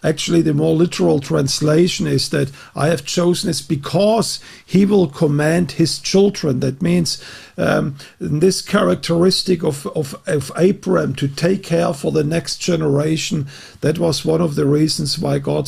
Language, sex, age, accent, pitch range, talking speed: English, male, 50-69, German, 145-175 Hz, 155 wpm